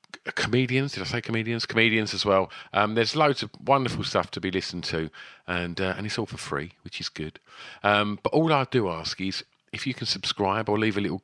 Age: 40-59